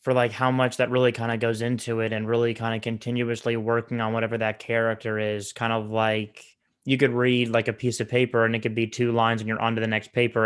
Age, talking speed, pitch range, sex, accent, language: 20-39, 260 wpm, 110-120 Hz, male, American, English